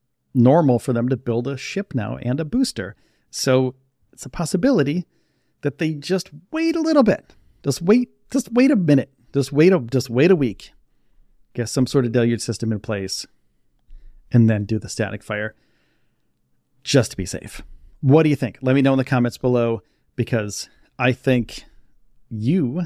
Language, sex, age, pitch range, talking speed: English, male, 40-59, 120-150 Hz, 175 wpm